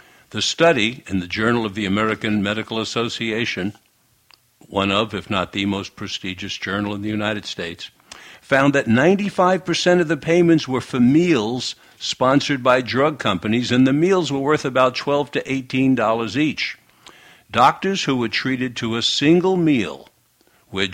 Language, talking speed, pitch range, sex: English, 155 wpm, 100-135 Hz, male